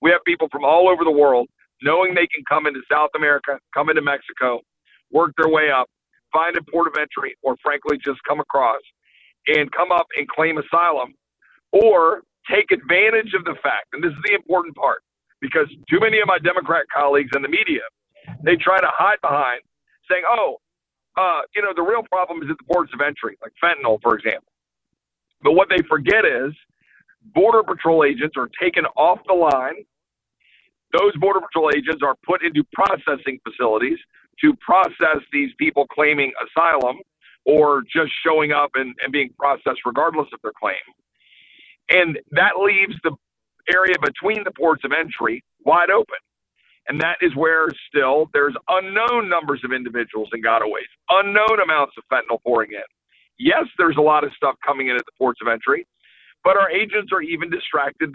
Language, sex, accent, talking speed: English, male, American, 180 wpm